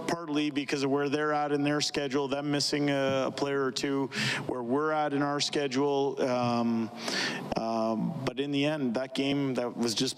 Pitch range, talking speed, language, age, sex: 115-140 Hz, 185 wpm, English, 40-59, male